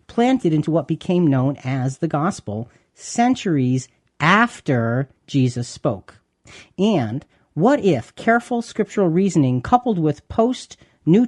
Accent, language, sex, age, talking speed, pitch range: American, English, male, 40-59, 110 wpm, 130-175 Hz